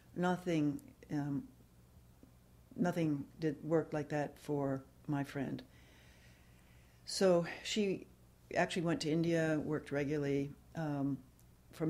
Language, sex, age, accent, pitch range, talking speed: English, female, 60-79, American, 130-165 Hz, 100 wpm